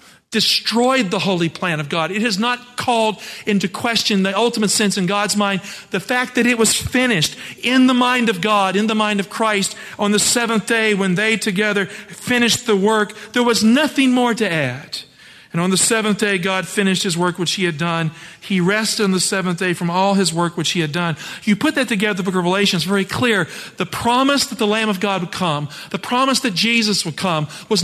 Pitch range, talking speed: 175-220 Hz, 225 wpm